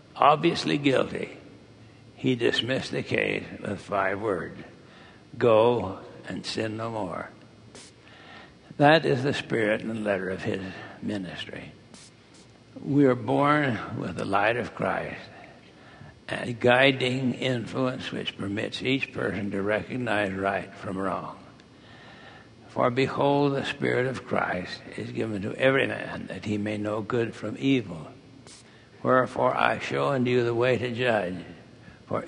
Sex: male